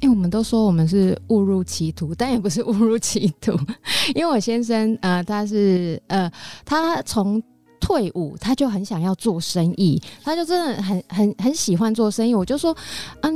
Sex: female